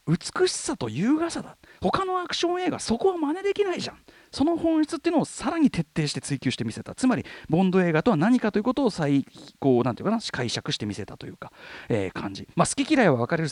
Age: 40-59